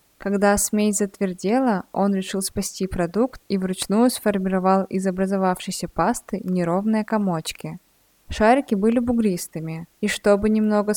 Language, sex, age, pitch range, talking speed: Russian, female, 20-39, 190-215 Hz, 115 wpm